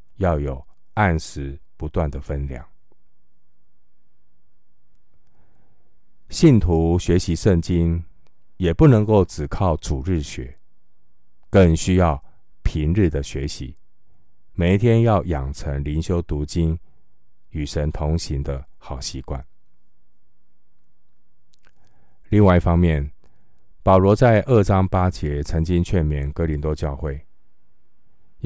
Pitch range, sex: 70-95 Hz, male